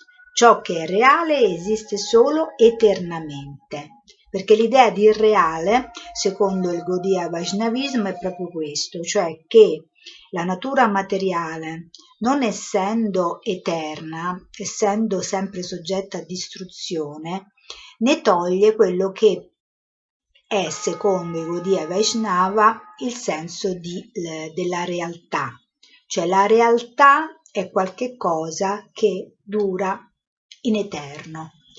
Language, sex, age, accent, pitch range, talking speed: Italian, female, 50-69, native, 175-220 Hz, 105 wpm